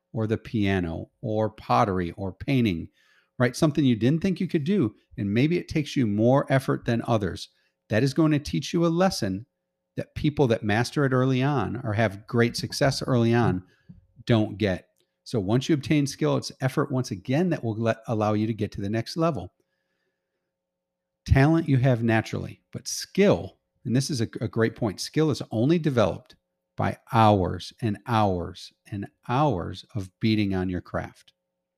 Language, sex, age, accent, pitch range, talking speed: English, male, 40-59, American, 100-135 Hz, 180 wpm